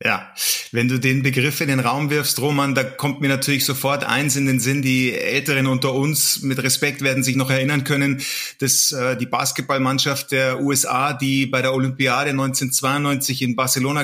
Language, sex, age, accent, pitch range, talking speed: German, male, 30-49, German, 130-145 Hz, 185 wpm